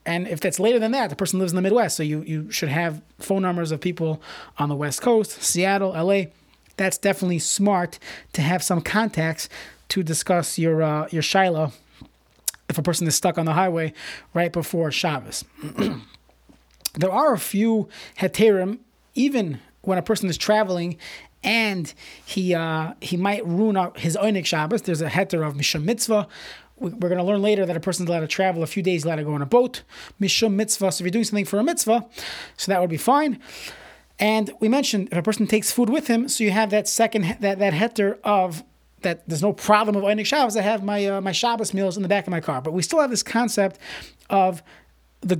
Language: English